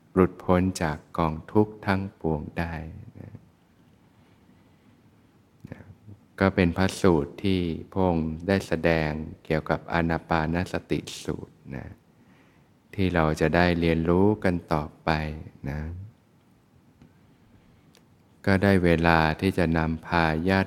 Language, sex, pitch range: Thai, male, 80-95 Hz